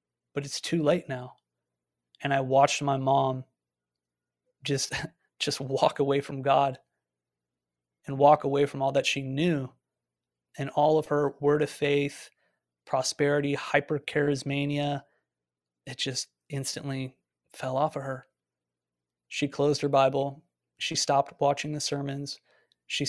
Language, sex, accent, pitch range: English, male, American, 130-145 Hz